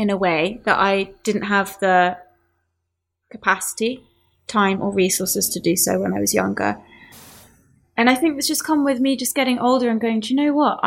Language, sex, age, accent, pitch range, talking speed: English, female, 20-39, British, 195-260 Hz, 200 wpm